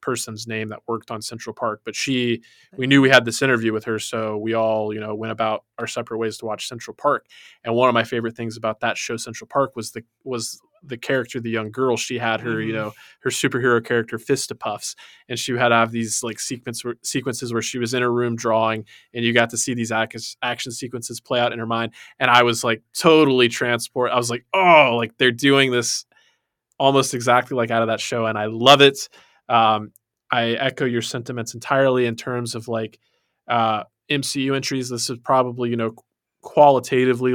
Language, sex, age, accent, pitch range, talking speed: English, male, 20-39, American, 115-125 Hz, 215 wpm